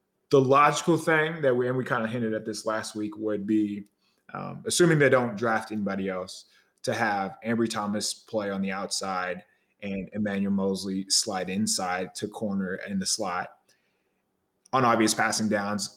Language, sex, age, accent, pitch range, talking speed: English, male, 20-39, American, 105-135 Hz, 170 wpm